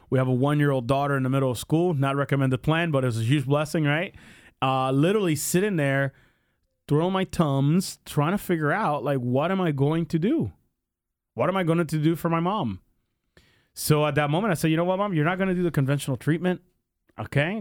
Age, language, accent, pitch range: 30-49, English, American, 135-170 Hz